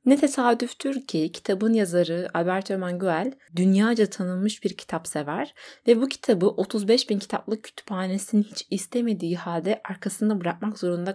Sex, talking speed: female, 140 wpm